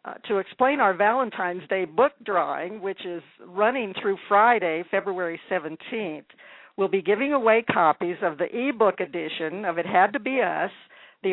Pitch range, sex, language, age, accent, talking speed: 175-220 Hz, female, English, 60-79, American, 165 wpm